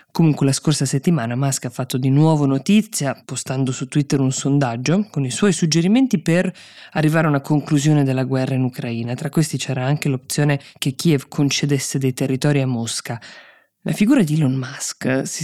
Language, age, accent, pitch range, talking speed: Italian, 20-39, native, 135-180 Hz, 180 wpm